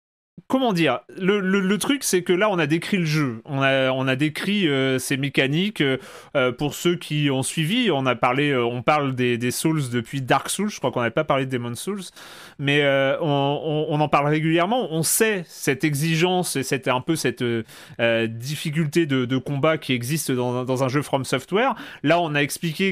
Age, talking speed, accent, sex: 30-49, 215 wpm, French, male